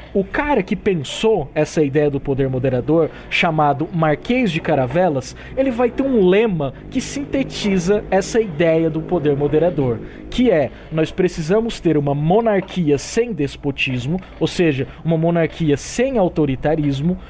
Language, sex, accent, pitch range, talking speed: Portuguese, male, Brazilian, 150-215 Hz, 140 wpm